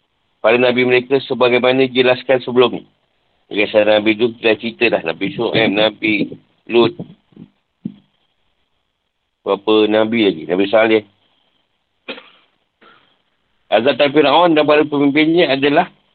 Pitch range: 110-140 Hz